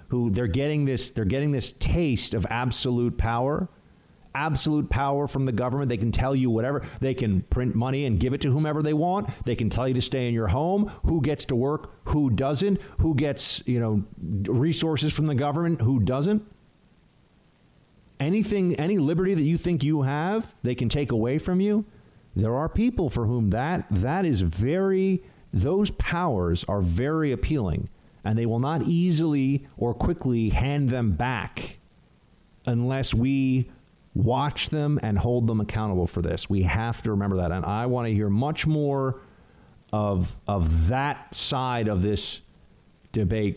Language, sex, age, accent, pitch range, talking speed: English, male, 50-69, American, 110-150 Hz, 170 wpm